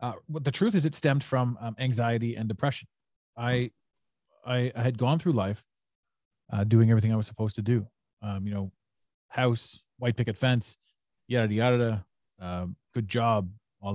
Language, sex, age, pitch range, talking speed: English, male, 30-49, 105-140 Hz, 175 wpm